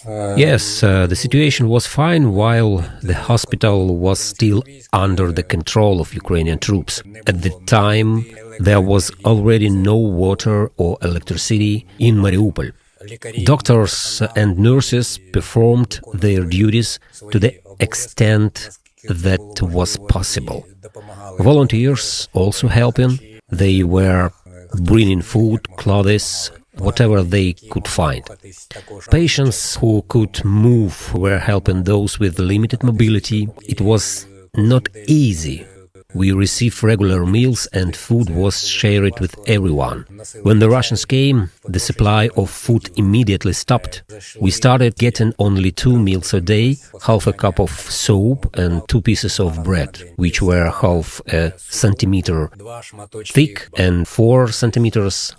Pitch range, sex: 95-115 Hz, male